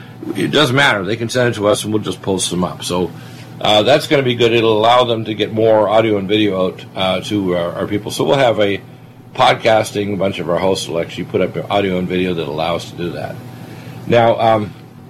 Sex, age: male, 50-69